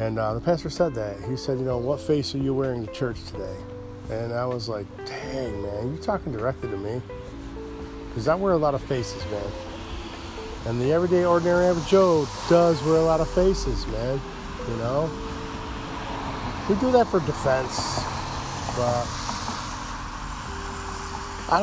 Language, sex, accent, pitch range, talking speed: English, male, American, 110-150 Hz, 165 wpm